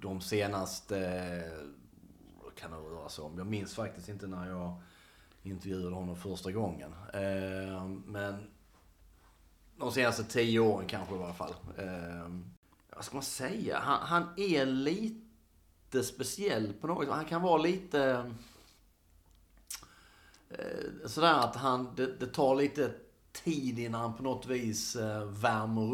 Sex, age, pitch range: male, 30-49, 90-115 Hz